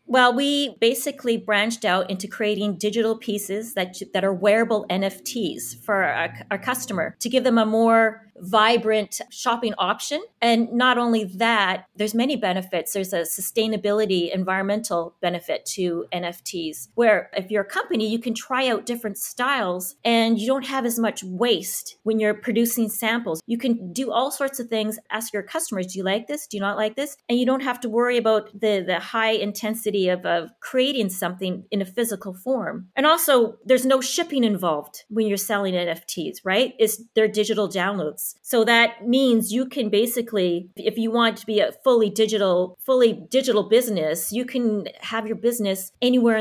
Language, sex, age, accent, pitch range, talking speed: English, female, 30-49, American, 195-235 Hz, 175 wpm